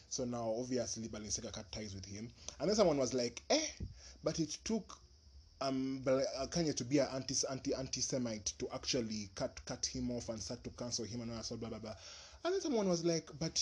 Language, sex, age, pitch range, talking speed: English, male, 20-39, 110-145 Hz, 220 wpm